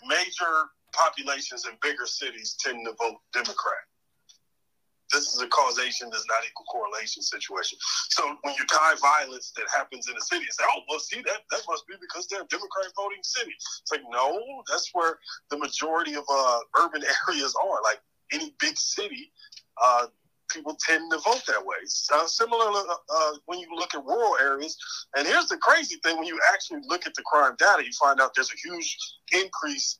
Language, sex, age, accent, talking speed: English, male, 30-49, American, 190 wpm